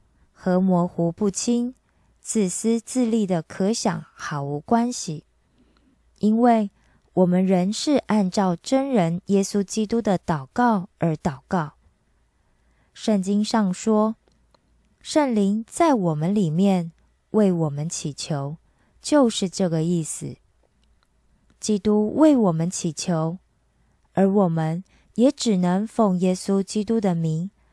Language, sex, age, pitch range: Korean, female, 20-39, 165-220 Hz